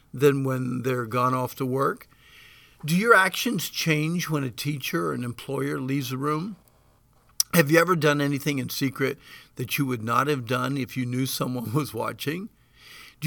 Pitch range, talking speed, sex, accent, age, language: 130-160 Hz, 180 wpm, male, American, 50-69, English